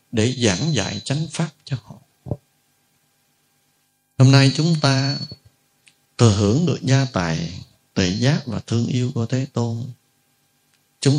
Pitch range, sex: 110-135 Hz, male